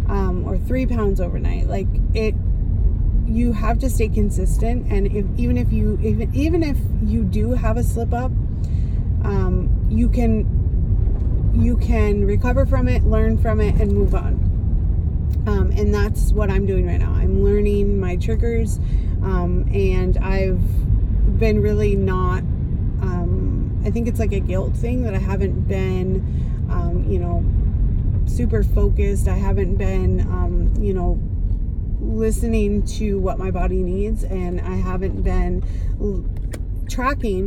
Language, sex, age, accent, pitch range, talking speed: English, female, 30-49, American, 90-100 Hz, 145 wpm